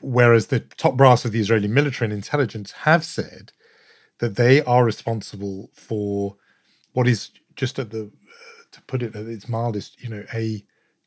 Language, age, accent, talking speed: English, 40-59, British, 175 wpm